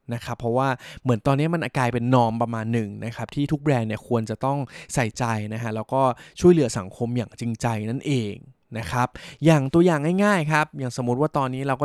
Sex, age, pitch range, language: male, 20-39, 115-145 Hz, Thai